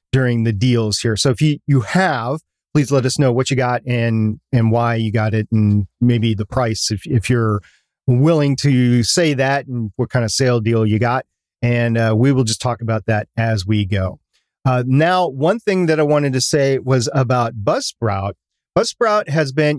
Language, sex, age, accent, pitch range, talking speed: English, male, 40-59, American, 115-140 Hz, 205 wpm